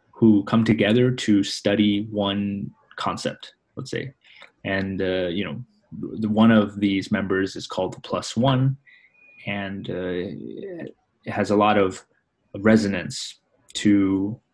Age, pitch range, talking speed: 20-39, 95-110 Hz, 130 wpm